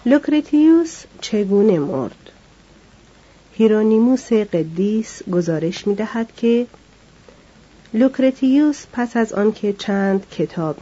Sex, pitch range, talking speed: female, 180-225 Hz, 80 wpm